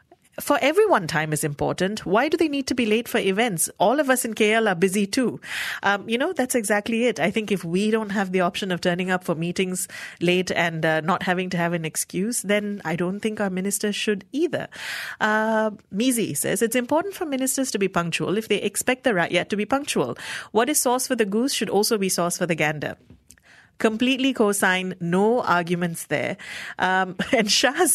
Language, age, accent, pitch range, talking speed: English, 30-49, Indian, 175-230 Hz, 210 wpm